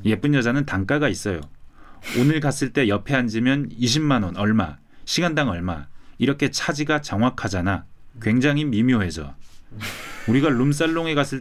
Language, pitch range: Korean, 100-145 Hz